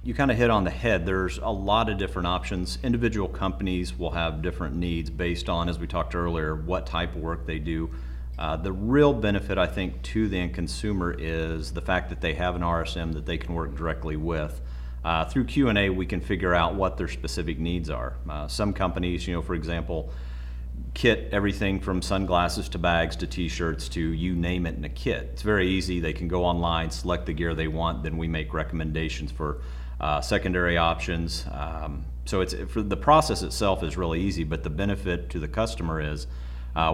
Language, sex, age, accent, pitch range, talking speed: English, male, 40-59, American, 75-90 Hz, 205 wpm